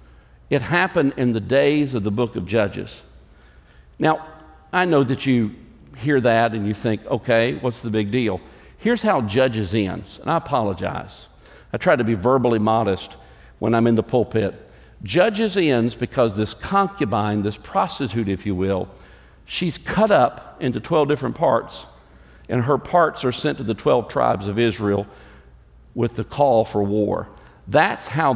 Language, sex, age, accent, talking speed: English, male, 50-69, American, 165 wpm